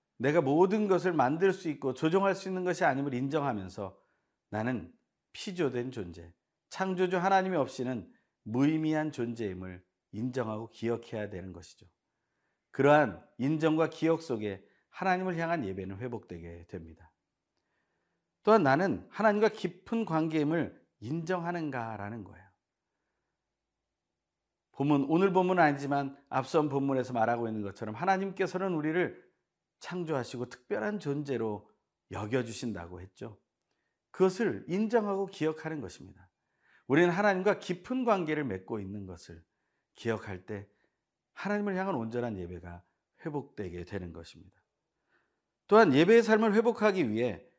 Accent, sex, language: native, male, Korean